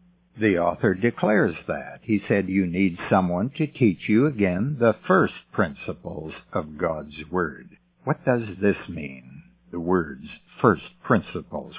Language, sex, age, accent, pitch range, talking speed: English, male, 60-79, American, 90-120 Hz, 135 wpm